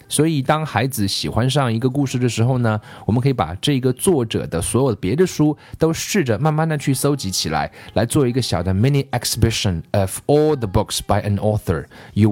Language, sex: Chinese, male